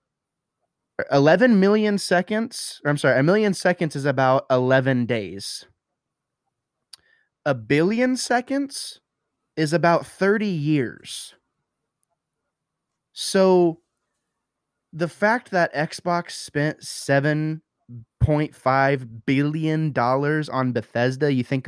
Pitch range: 125-165 Hz